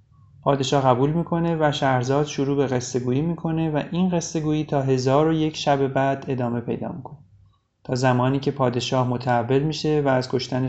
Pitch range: 125-150 Hz